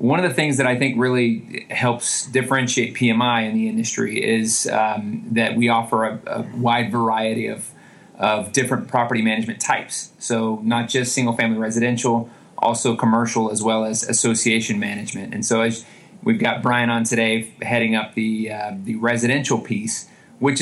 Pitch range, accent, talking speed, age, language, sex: 110-125 Hz, American, 170 wpm, 30-49, English, male